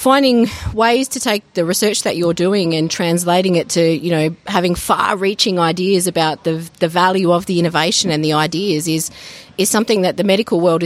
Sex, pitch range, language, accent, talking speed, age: female, 170-200 Hz, English, Australian, 195 wpm, 30-49